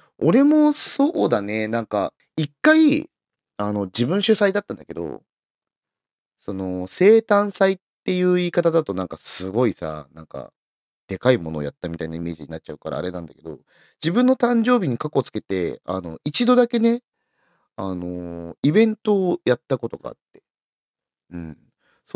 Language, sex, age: Japanese, male, 30-49